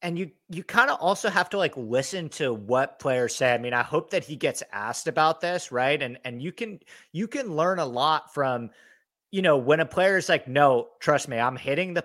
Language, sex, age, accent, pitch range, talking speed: English, male, 30-49, American, 120-165 Hz, 240 wpm